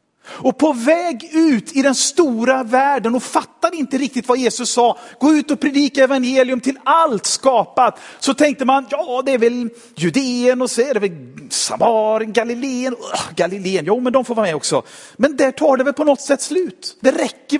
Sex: male